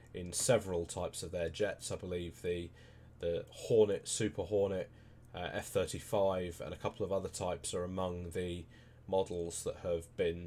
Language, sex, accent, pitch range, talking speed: English, male, British, 85-105 Hz, 160 wpm